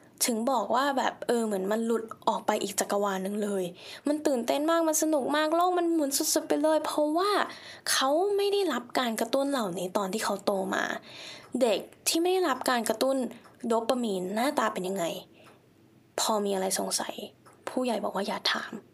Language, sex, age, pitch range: Thai, female, 10-29, 200-275 Hz